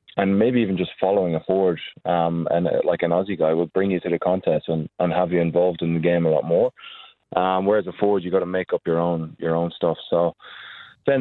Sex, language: male, English